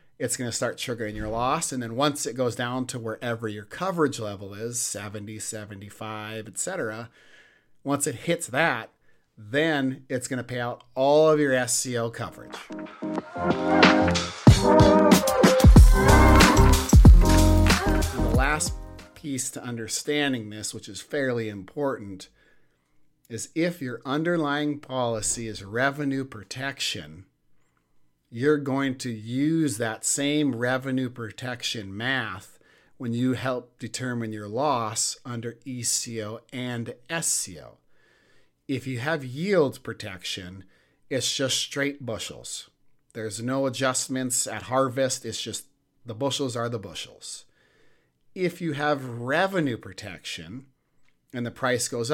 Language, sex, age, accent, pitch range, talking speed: English, male, 50-69, American, 110-135 Hz, 120 wpm